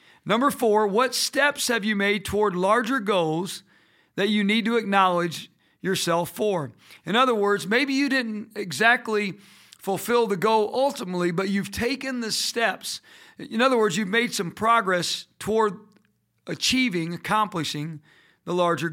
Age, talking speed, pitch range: 40-59, 145 wpm, 180-220 Hz